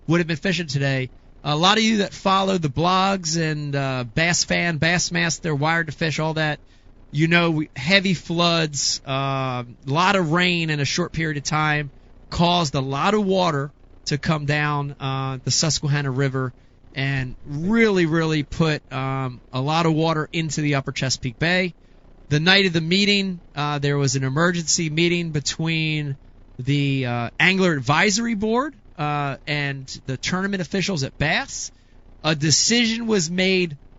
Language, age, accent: English, 30-49, American